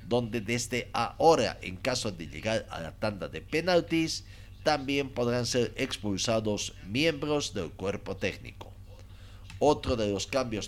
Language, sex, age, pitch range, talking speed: Spanish, male, 50-69, 95-125 Hz, 135 wpm